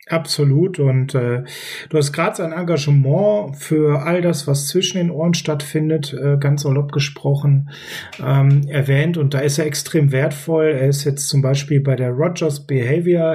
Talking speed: 160 wpm